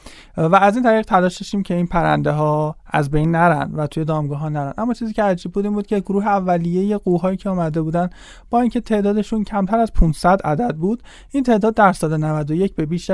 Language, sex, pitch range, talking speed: English, male, 155-205 Hz, 205 wpm